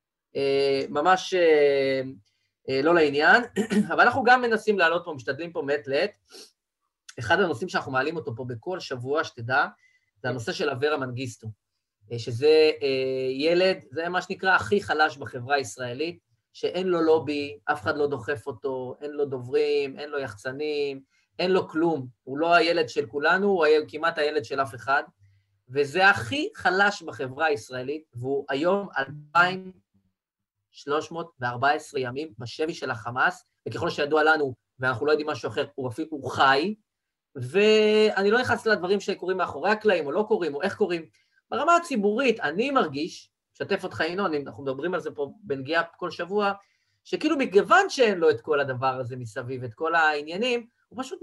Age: 30-49